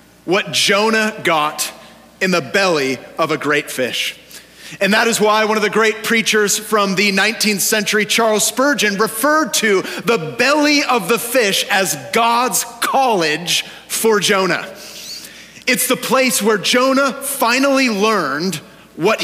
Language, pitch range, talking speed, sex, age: English, 170-225 Hz, 140 wpm, male, 30-49